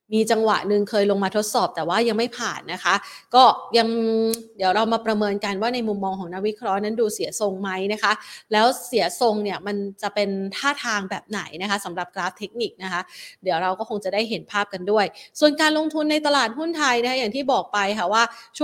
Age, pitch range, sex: 20-39, 190-230 Hz, female